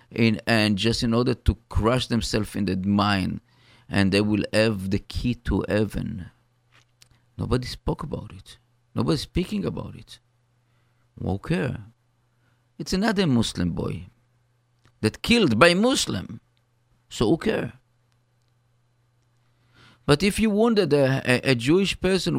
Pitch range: 105-125 Hz